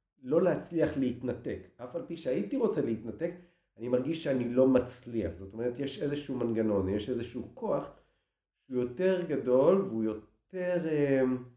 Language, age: Hebrew, 50-69